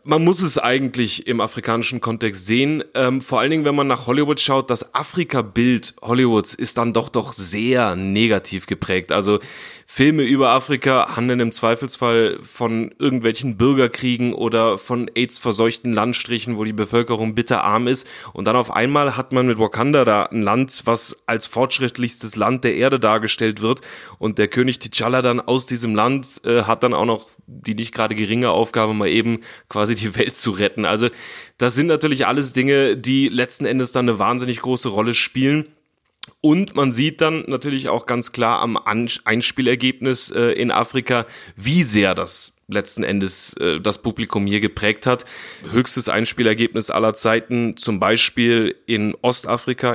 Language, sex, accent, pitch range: German, male, German, 115-130 Hz